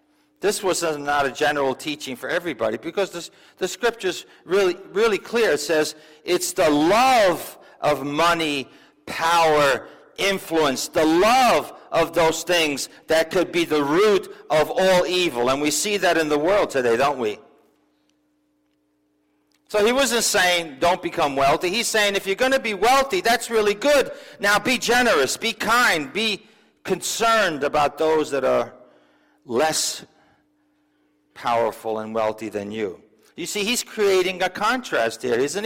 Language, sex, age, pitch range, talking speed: English, male, 50-69, 145-215 Hz, 155 wpm